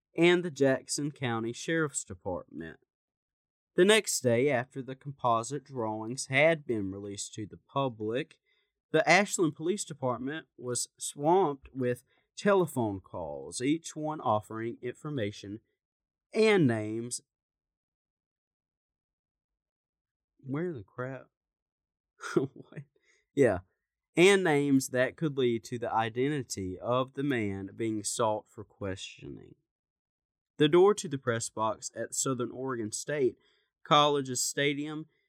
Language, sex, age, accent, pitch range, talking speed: English, male, 30-49, American, 110-145 Hz, 110 wpm